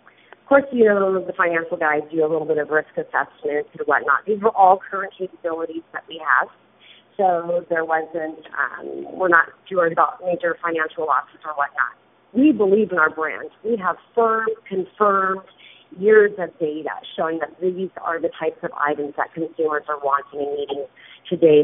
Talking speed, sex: 175 wpm, female